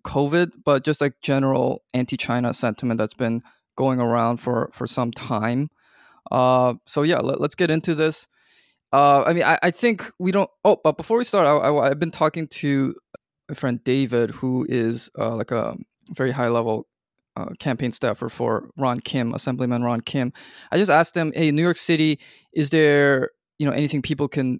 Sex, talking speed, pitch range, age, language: male, 185 wpm, 125-150 Hz, 20-39, English